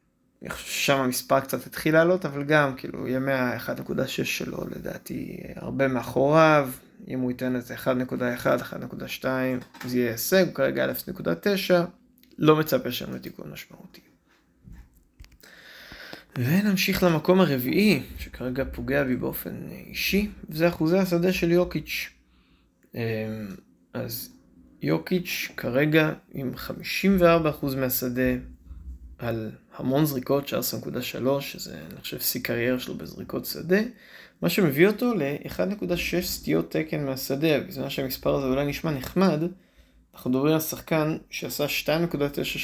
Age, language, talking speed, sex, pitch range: 20-39, Hebrew, 115 wpm, male, 125-160 Hz